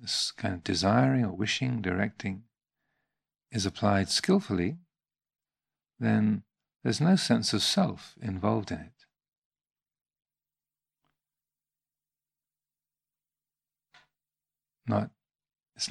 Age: 50-69